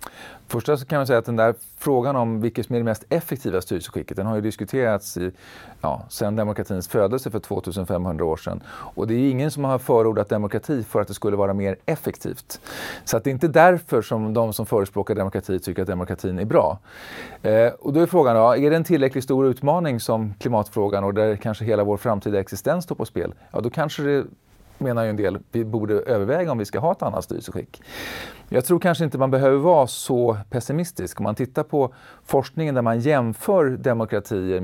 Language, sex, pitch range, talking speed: English, male, 100-135 Hz, 210 wpm